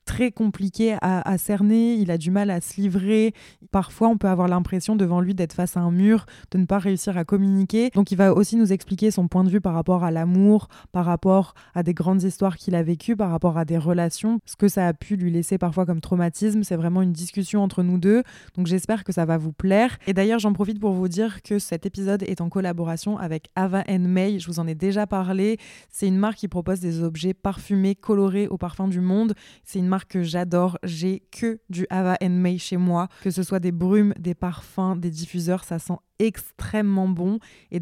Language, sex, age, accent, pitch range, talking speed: French, female, 20-39, French, 180-200 Hz, 230 wpm